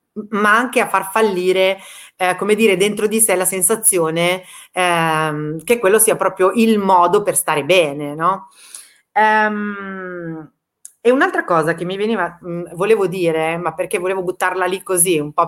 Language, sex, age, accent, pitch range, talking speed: Italian, female, 30-49, native, 175-225 Hz, 155 wpm